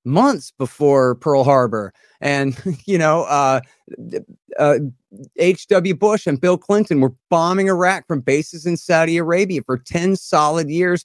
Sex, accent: male, American